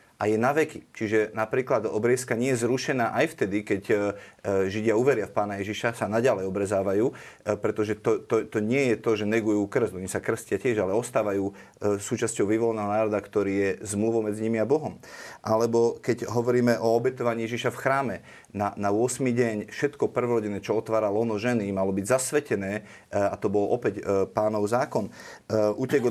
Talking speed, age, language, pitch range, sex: 170 wpm, 30-49, Slovak, 105-125 Hz, male